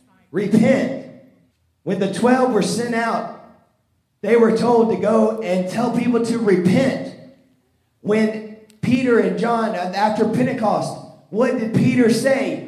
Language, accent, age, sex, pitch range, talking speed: English, American, 30-49, male, 180-230 Hz, 130 wpm